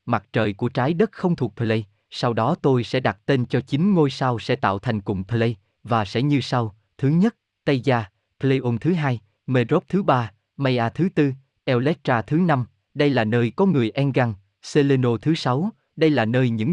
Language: Vietnamese